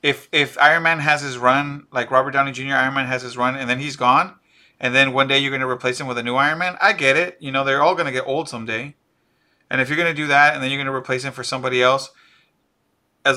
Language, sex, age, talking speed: English, male, 30-49, 285 wpm